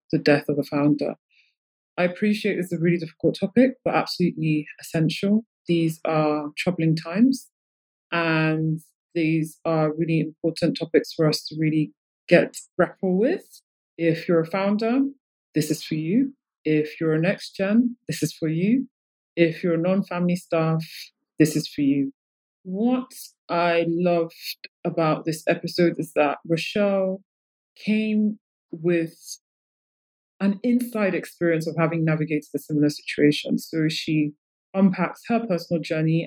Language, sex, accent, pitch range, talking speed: English, female, British, 155-180 Hz, 140 wpm